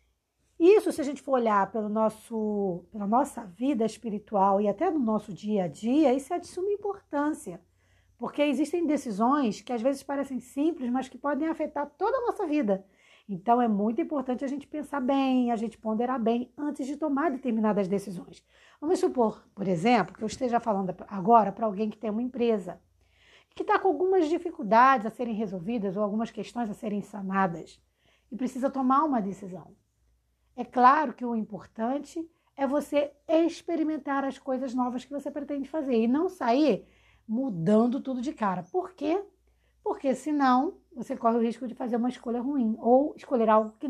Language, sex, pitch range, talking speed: Portuguese, female, 220-295 Hz, 175 wpm